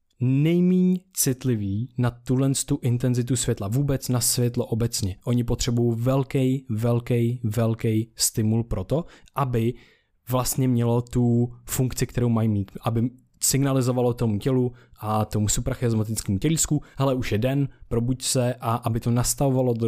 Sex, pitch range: male, 110-130 Hz